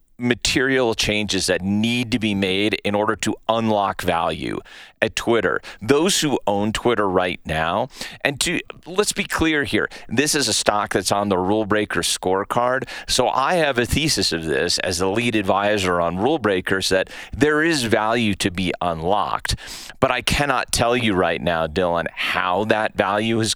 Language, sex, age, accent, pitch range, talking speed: English, male, 40-59, American, 95-120 Hz, 175 wpm